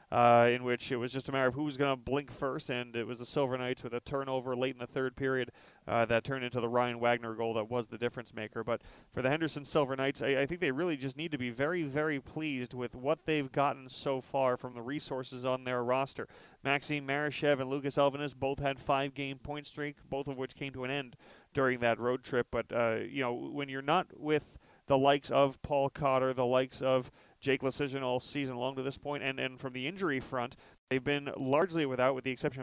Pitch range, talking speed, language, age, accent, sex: 125-140 Hz, 240 wpm, English, 30-49, American, male